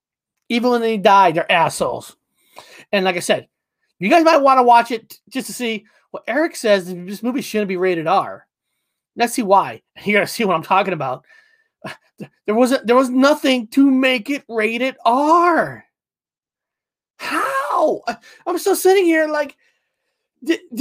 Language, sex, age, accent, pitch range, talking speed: English, male, 30-49, American, 180-260 Hz, 165 wpm